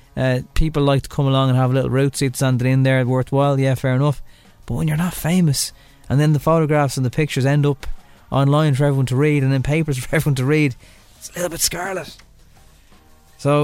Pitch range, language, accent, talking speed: 115-150 Hz, English, Irish, 225 wpm